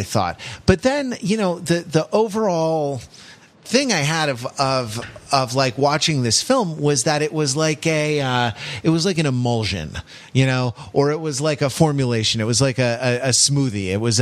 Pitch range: 110-150 Hz